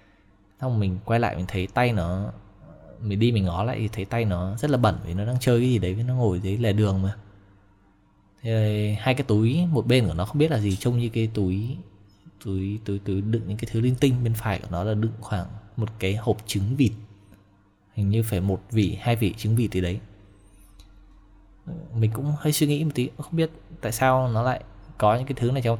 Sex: male